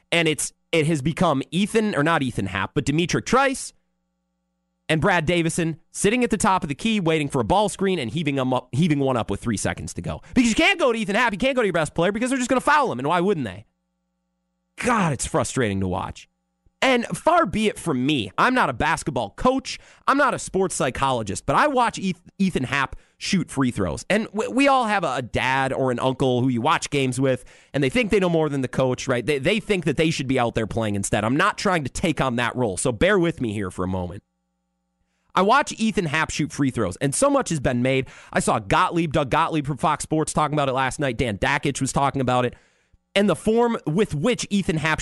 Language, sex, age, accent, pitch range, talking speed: English, male, 30-49, American, 120-205 Hz, 245 wpm